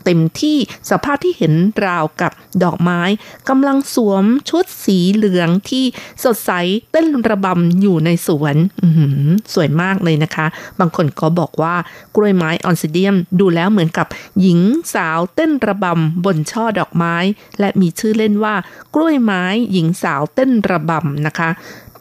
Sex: female